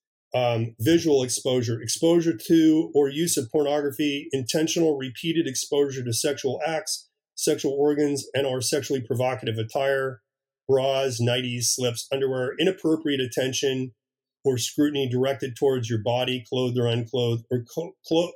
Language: English